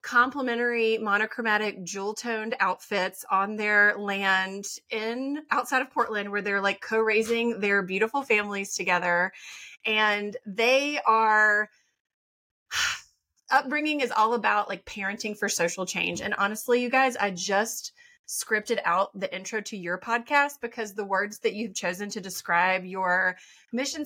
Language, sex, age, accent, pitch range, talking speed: English, female, 30-49, American, 205-255 Hz, 135 wpm